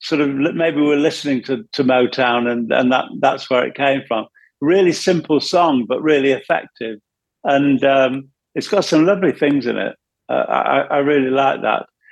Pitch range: 125-155 Hz